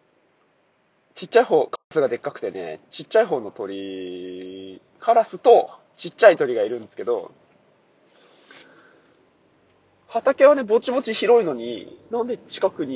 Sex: male